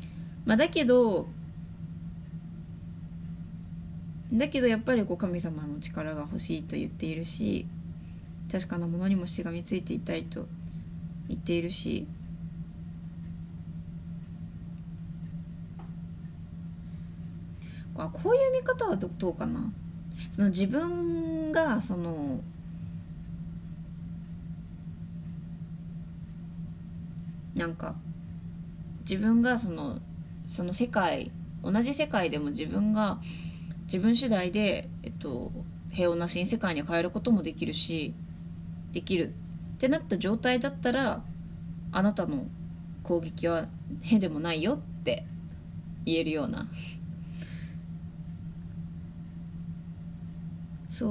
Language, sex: Japanese, female